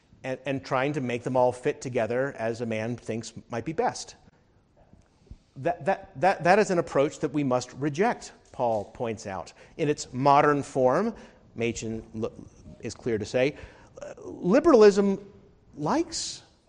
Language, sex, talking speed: English, male, 145 wpm